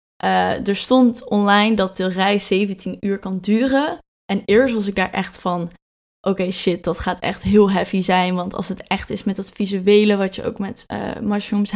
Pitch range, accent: 195-215 Hz, Dutch